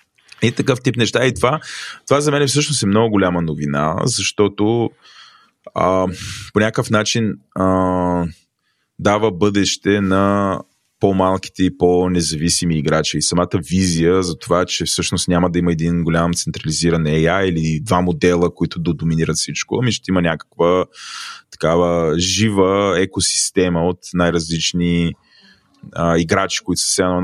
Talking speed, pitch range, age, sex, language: 135 wpm, 85-100 Hz, 20-39, male, Bulgarian